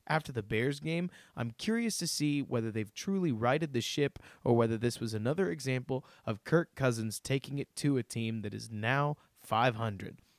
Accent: American